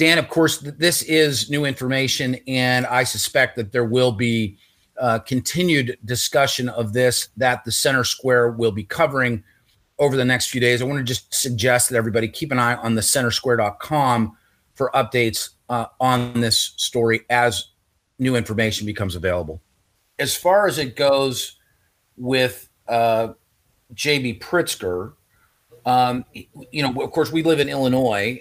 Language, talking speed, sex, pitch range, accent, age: English, 155 wpm, male, 110-130 Hz, American, 40-59